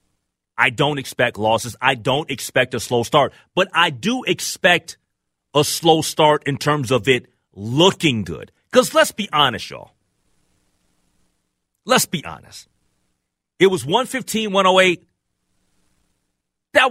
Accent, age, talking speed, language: American, 40-59, 130 wpm, English